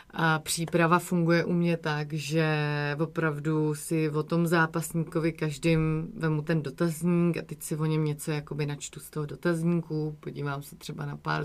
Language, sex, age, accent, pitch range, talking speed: Czech, female, 30-49, native, 145-170 Hz, 170 wpm